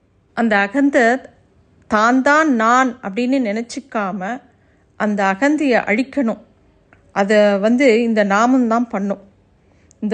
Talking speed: 95 wpm